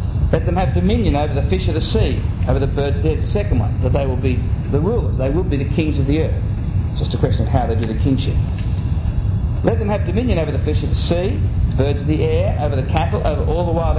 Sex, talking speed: male, 275 wpm